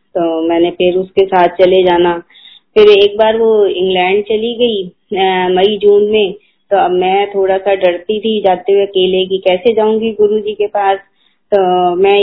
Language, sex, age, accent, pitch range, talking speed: Hindi, female, 20-39, native, 175-210 Hz, 170 wpm